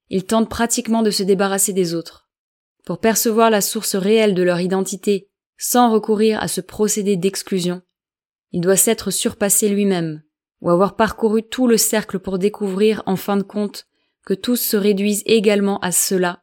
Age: 20-39